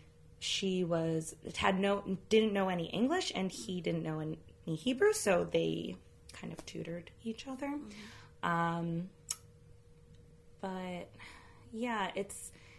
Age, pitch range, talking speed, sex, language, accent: 20-39, 115-190 Hz, 115 wpm, female, English, American